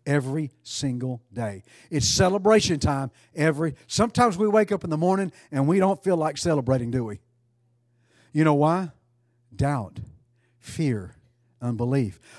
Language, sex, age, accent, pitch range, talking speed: English, male, 50-69, American, 120-170 Hz, 135 wpm